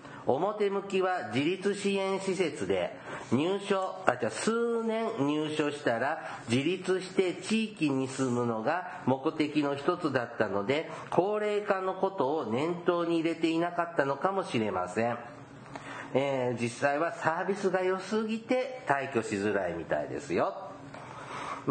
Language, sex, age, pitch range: Japanese, male, 50-69, 145-190 Hz